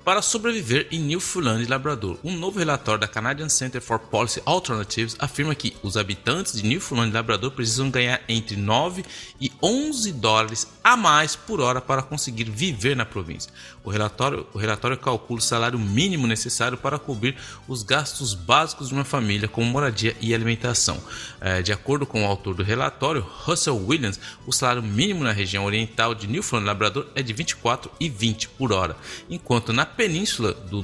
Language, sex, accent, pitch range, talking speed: Portuguese, male, Brazilian, 110-140 Hz, 170 wpm